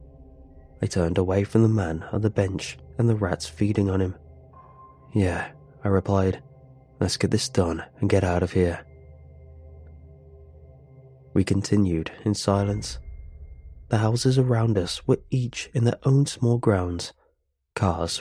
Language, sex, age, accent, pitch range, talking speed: English, male, 20-39, British, 90-105 Hz, 140 wpm